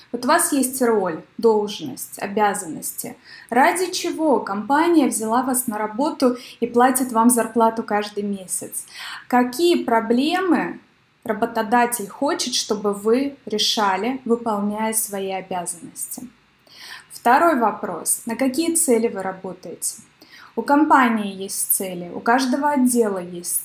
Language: Russian